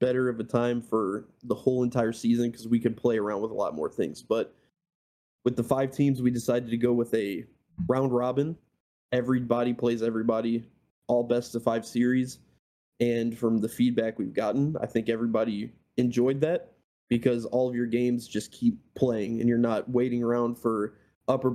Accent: American